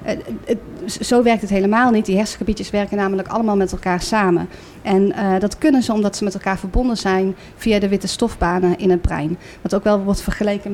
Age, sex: 30-49, female